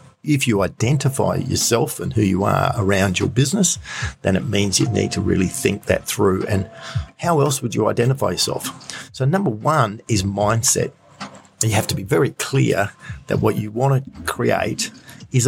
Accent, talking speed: Australian, 180 wpm